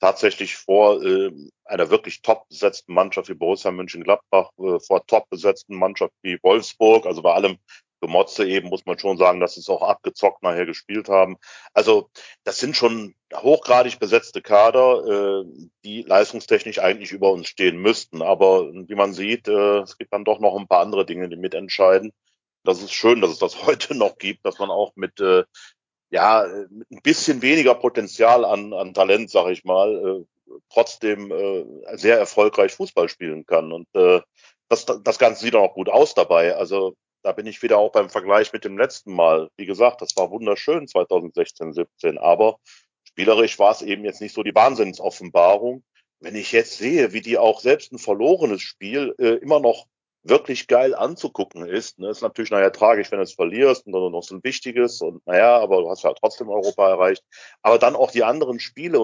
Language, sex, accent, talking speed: German, male, German, 190 wpm